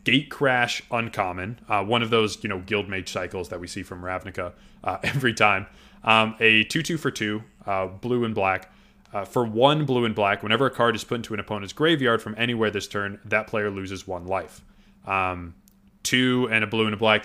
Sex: male